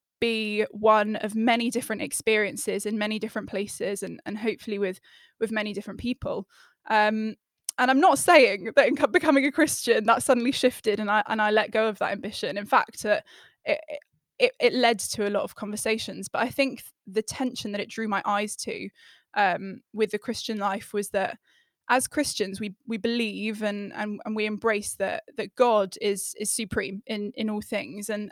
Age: 10-29